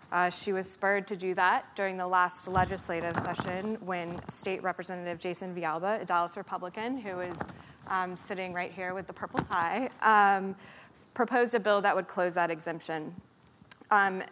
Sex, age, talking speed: female, 20-39, 170 wpm